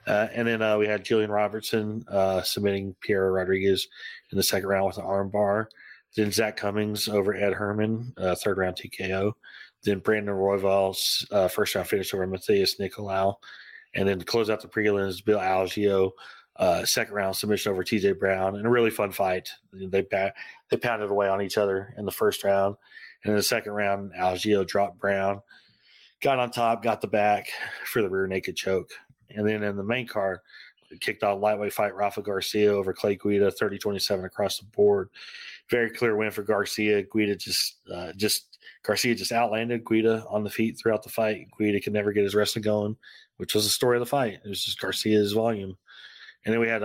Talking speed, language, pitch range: 195 wpm, English, 100-110 Hz